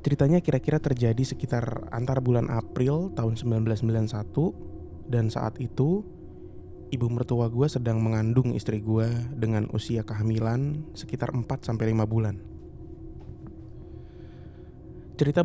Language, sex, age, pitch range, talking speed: Indonesian, male, 20-39, 110-130 Hz, 100 wpm